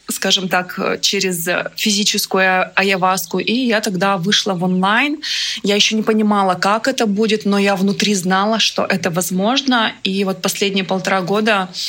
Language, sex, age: Russian, female, 20-39